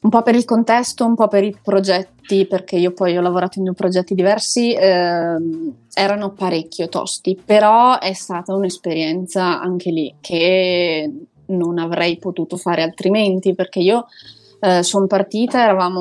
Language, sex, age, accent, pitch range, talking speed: Italian, female, 20-39, native, 180-215 Hz, 155 wpm